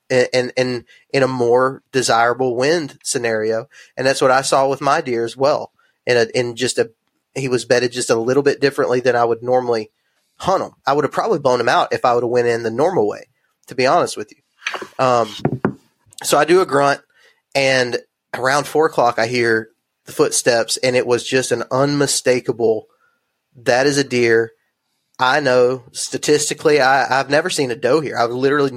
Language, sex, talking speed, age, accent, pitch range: English, male, 195 wpm, 20-39, American, 120-140 Hz